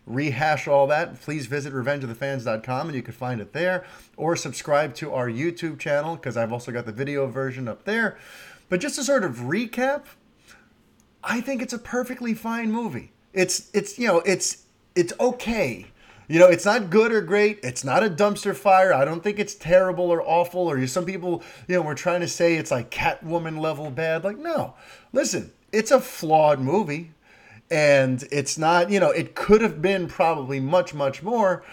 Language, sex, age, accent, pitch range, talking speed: English, male, 30-49, American, 145-215 Hz, 190 wpm